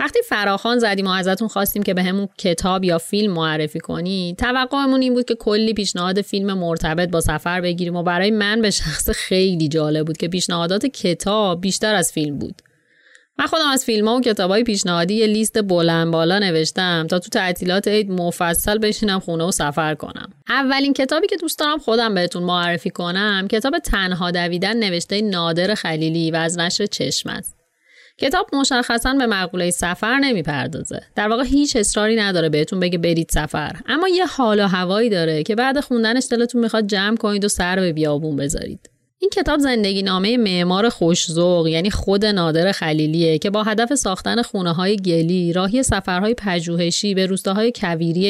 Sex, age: female, 30-49